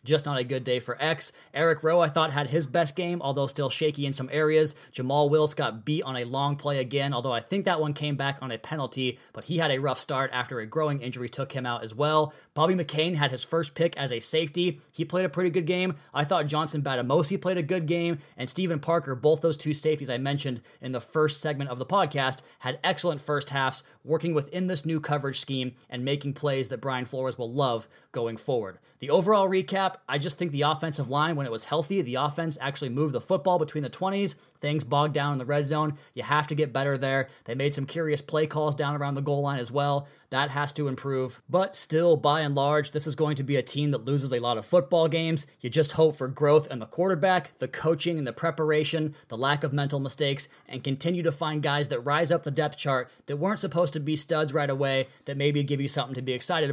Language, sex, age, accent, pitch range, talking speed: English, male, 20-39, American, 135-160 Hz, 245 wpm